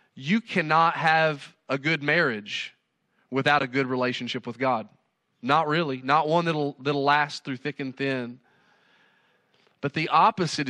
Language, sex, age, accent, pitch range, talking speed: English, male, 30-49, American, 130-165 Hz, 150 wpm